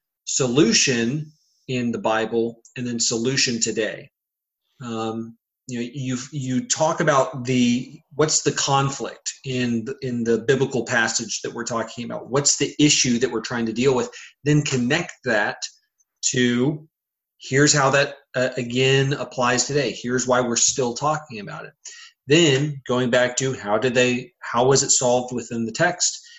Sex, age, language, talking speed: male, 30-49, English, 160 wpm